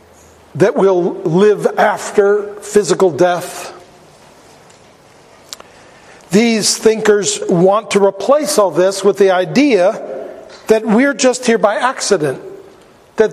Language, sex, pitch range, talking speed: English, male, 190-230 Hz, 105 wpm